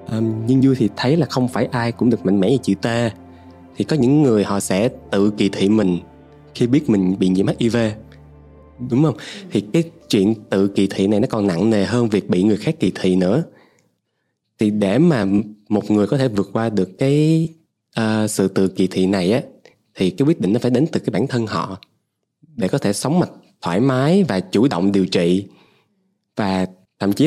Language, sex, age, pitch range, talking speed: Vietnamese, male, 20-39, 95-135 Hz, 215 wpm